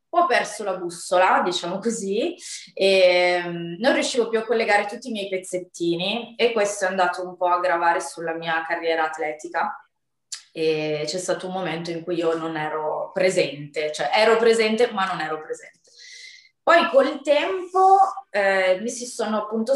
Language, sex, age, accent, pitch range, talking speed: Italian, female, 20-39, native, 175-215 Hz, 165 wpm